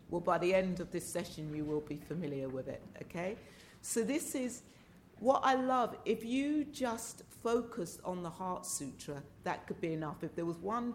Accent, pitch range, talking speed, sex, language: British, 160-195 Hz, 195 wpm, female, English